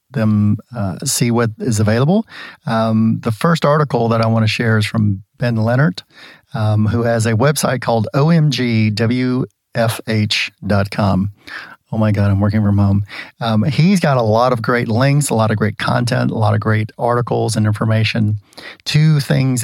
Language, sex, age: English, male, 40-59